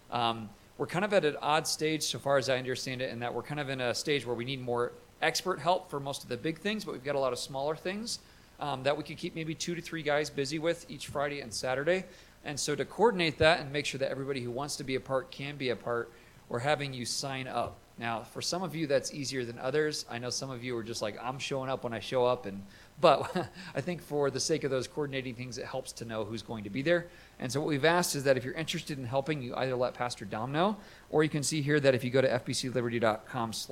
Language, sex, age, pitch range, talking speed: English, male, 40-59, 120-150 Hz, 280 wpm